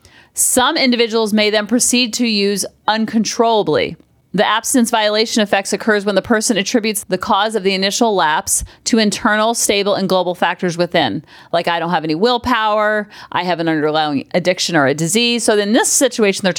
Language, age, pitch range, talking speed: English, 30-49, 180-230 Hz, 175 wpm